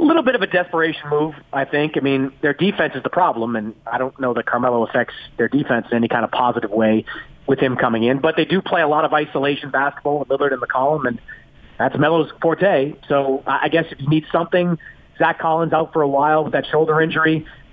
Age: 30-49